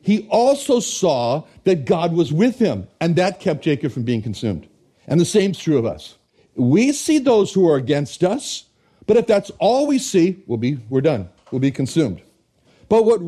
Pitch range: 155-220 Hz